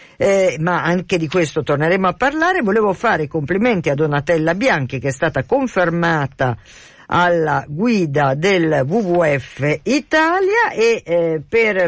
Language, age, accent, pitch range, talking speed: Italian, 50-69, native, 150-200 Hz, 135 wpm